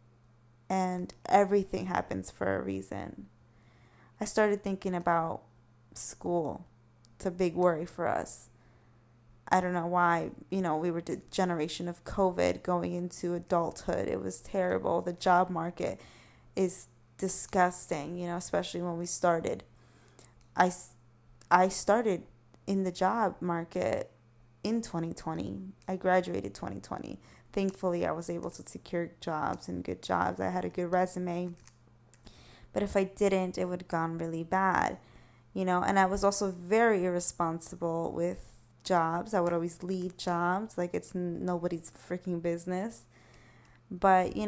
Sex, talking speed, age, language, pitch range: female, 140 wpm, 20-39, English, 120-195 Hz